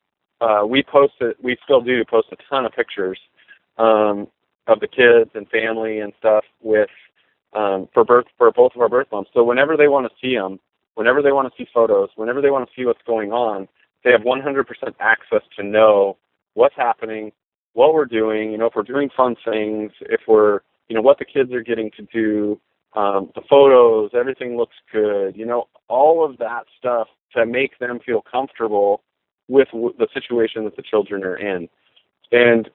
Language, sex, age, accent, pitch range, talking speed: English, male, 30-49, American, 105-135 Hz, 195 wpm